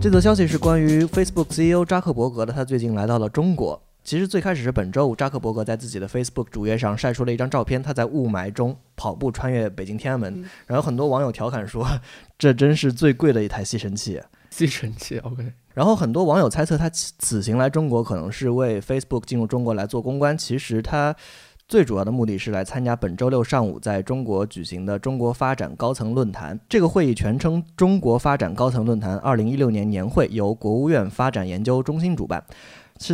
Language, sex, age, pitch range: Chinese, male, 20-39, 110-140 Hz